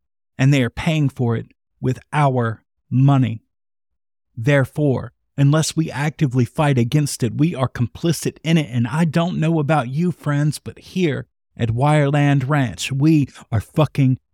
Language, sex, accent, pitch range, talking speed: English, male, American, 120-150 Hz, 150 wpm